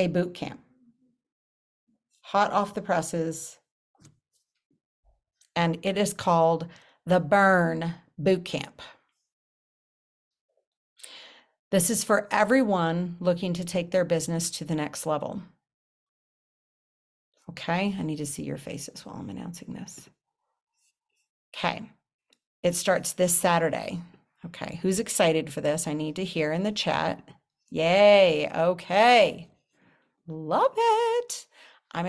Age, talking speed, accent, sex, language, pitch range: 50-69, 110 wpm, American, female, English, 165-215 Hz